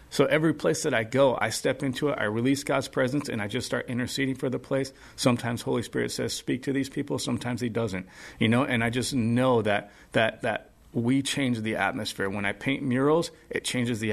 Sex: male